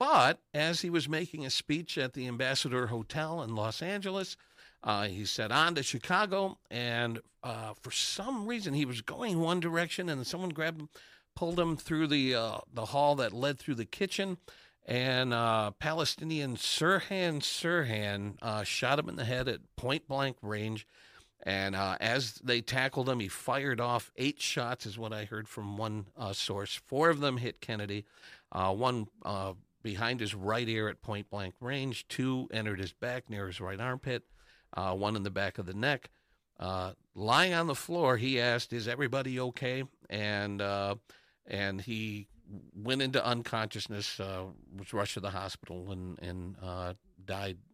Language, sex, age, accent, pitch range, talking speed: English, male, 50-69, American, 100-140 Hz, 175 wpm